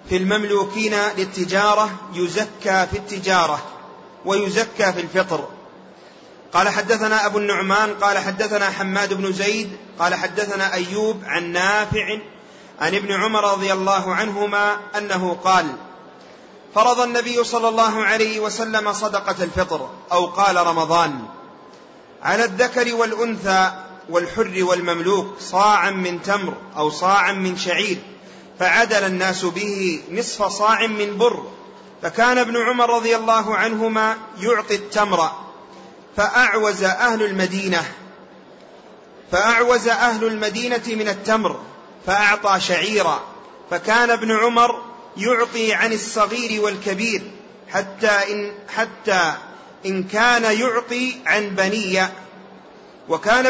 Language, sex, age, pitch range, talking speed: Arabic, male, 30-49, 190-225 Hz, 105 wpm